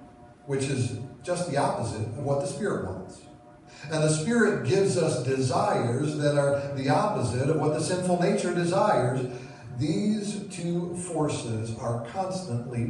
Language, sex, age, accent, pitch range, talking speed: English, male, 50-69, American, 120-140 Hz, 145 wpm